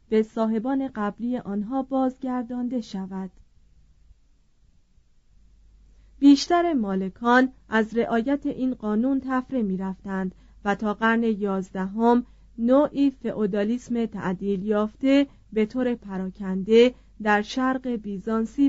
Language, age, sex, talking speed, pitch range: Persian, 30-49, female, 90 wpm, 205-255 Hz